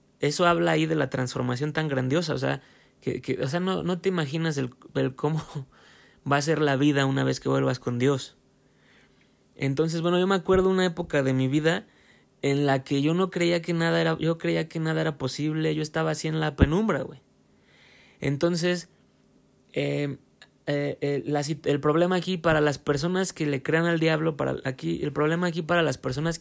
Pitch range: 140-170 Hz